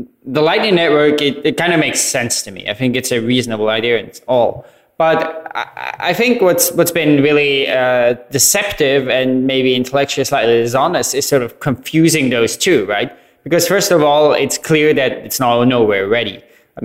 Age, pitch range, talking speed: 20-39, 125-155 Hz, 190 wpm